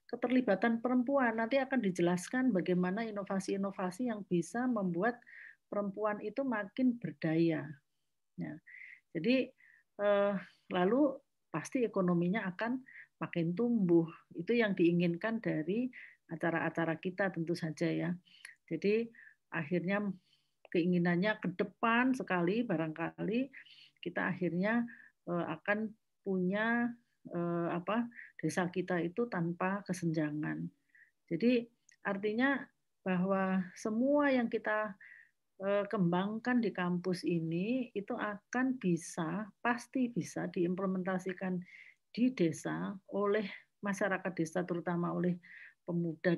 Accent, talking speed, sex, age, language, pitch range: native, 90 wpm, female, 50-69, Indonesian, 170-225 Hz